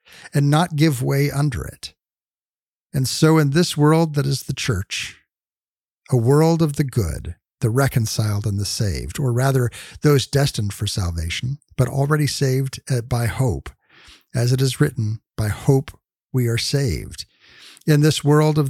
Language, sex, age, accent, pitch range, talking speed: English, male, 50-69, American, 115-150 Hz, 155 wpm